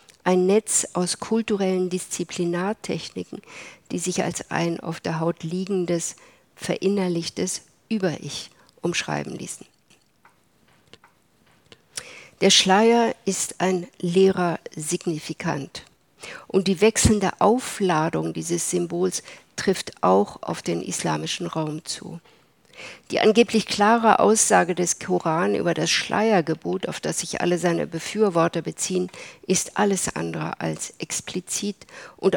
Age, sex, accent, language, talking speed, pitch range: 50-69, female, German, German, 110 wpm, 165-195 Hz